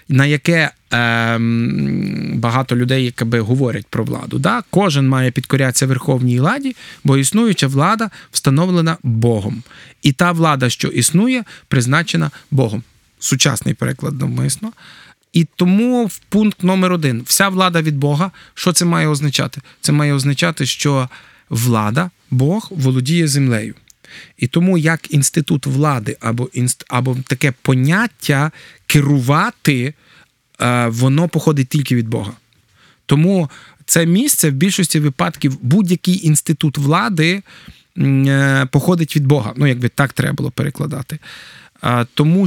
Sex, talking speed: male, 120 wpm